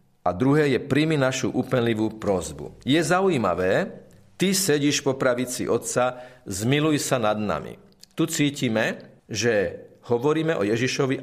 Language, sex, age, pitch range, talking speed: Slovak, male, 40-59, 115-145 Hz, 130 wpm